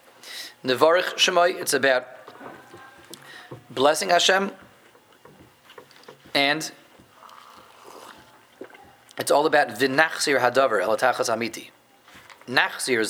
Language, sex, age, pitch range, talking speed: English, male, 30-49, 130-160 Hz, 70 wpm